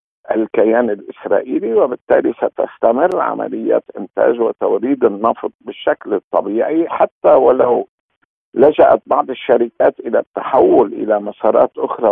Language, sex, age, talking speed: Arabic, male, 50-69, 100 wpm